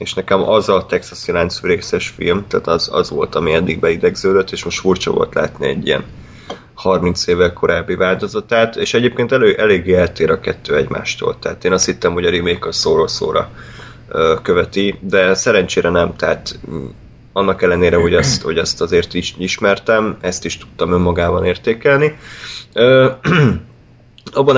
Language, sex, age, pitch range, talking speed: Hungarian, male, 30-49, 90-120 Hz, 150 wpm